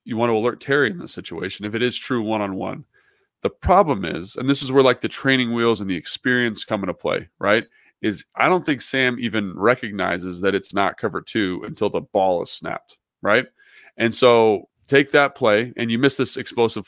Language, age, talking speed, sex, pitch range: English, 20-39, 210 wpm, male, 105-130 Hz